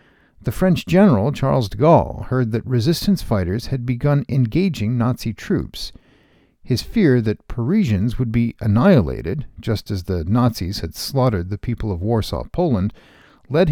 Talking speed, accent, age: 150 wpm, American, 50-69